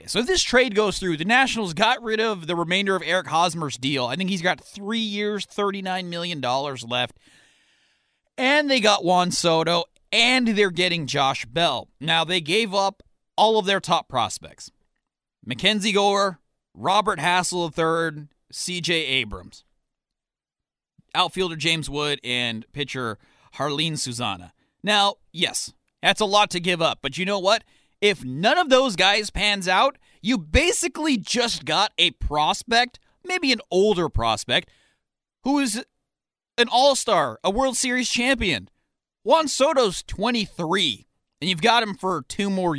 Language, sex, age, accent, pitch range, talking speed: English, male, 30-49, American, 155-215 Hz, 150 wpm